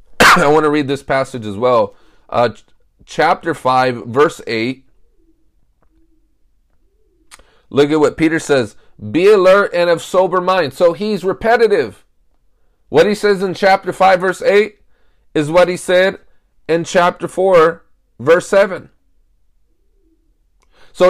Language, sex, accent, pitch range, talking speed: English, male, American, 140-215 Hz, 130 wpm